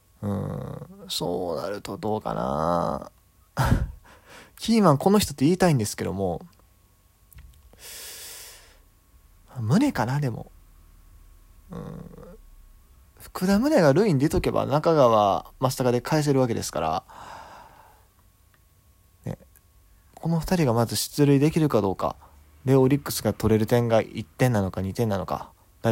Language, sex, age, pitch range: Japanese, male, 20-39, 90-130 Hz